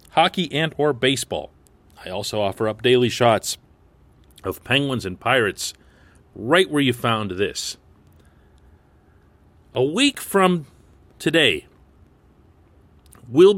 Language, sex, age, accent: English, male, 40-59, American